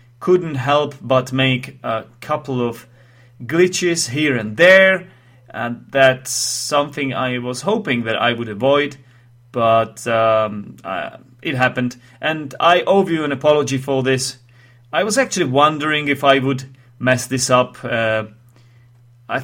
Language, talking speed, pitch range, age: English, 140 wpm, 120-140 Hz, 30-49